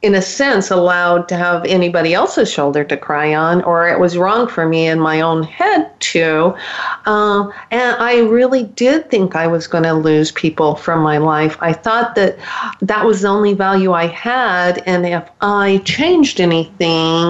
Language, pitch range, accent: English, 175-230 Hz, American